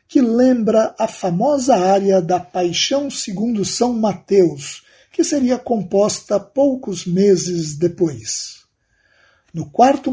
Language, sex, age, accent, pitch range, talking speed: Portuguese, male, 50-69, Brazilian, 175-255 Hz, 105 wpm